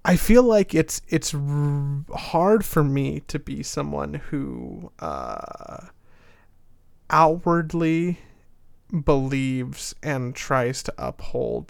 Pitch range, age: 125-150 Hz, 30-49